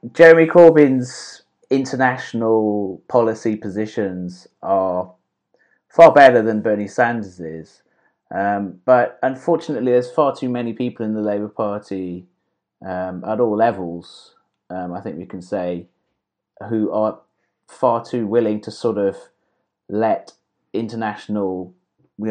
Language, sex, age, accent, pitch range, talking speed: English, male, 30-49, British, 95-120 Hz, 120 wpm